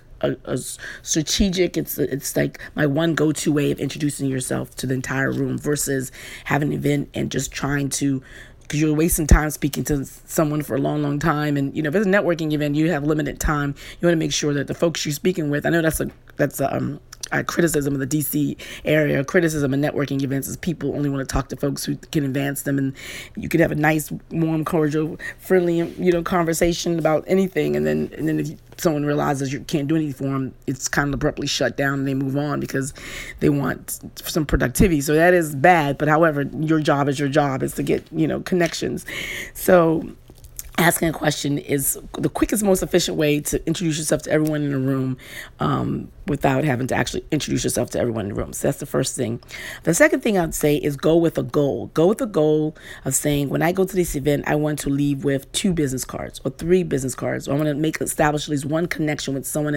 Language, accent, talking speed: English, American, 230 wpm